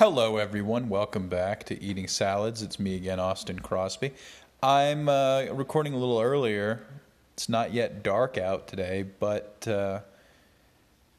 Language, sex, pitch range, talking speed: English, male, 95-115 Hz, 140 wpm